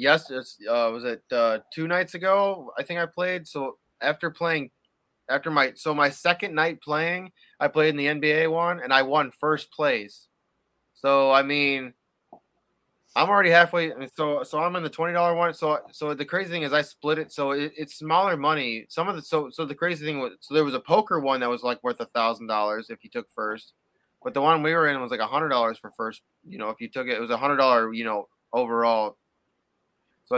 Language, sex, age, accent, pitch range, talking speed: English, male, 20-39, American, 125-155 Hz, 230 wpm